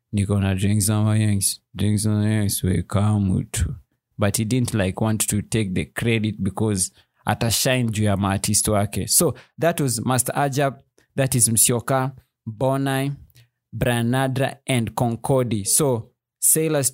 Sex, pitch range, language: male, 105-125 Hz, English